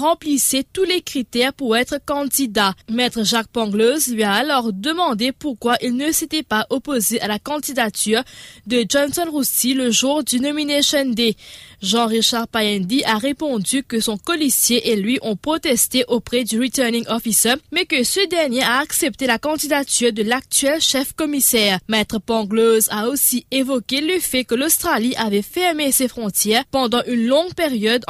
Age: 20-39